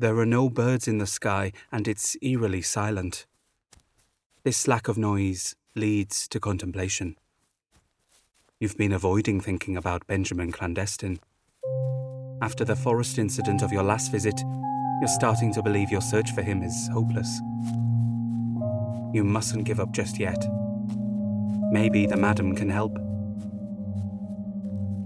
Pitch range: 100-115 Hz